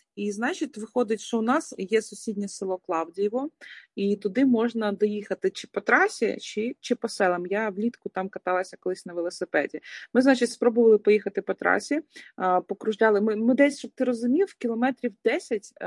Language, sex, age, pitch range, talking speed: Ukrainian, female, 20-39, 195-235 Hz, 165 wpm